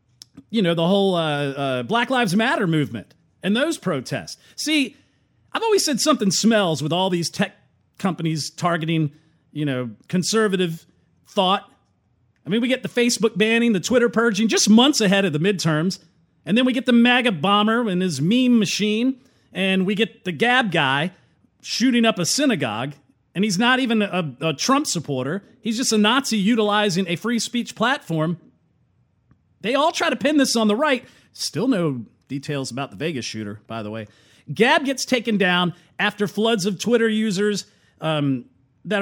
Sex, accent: male, American